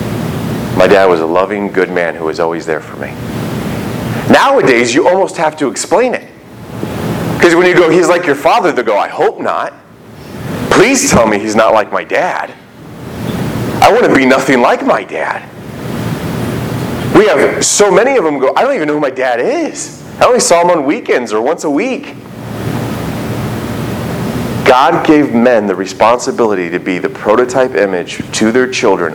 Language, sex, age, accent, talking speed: English, male, 30-49, American, 180 wpm